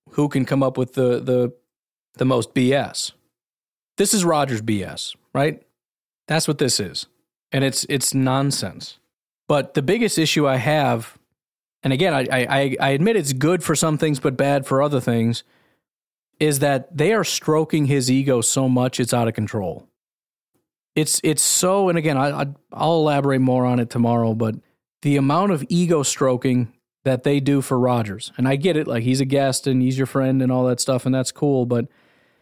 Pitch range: 125-145 Hz